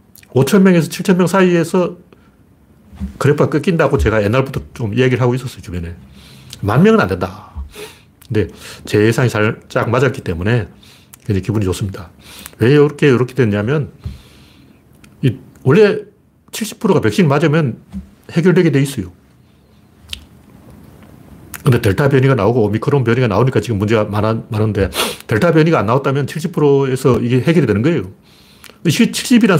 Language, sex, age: Korean, male, 40-59